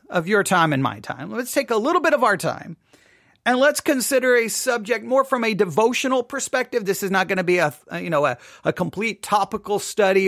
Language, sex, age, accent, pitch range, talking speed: English, male, 40-59, American, 195-270 Hz, 220 wpm